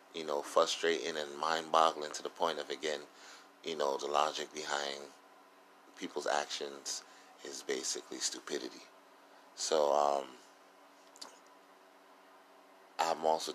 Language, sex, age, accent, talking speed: English, male, 30-49, American, 105 wpm